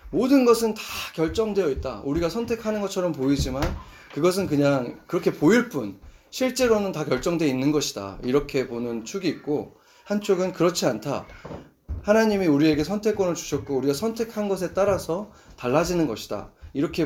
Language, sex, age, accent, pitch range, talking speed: English, male, 30-49, Korean, 135-205 Hz, 130 wpm